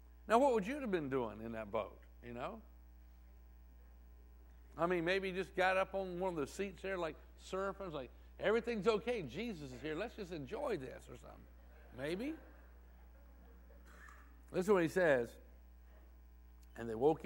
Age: 60-79